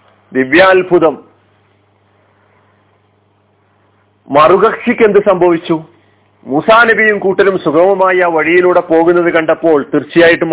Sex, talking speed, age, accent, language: male, 65 wpm, 40-59, native, Malayalam